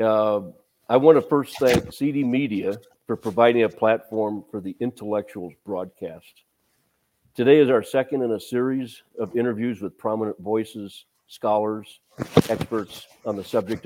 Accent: American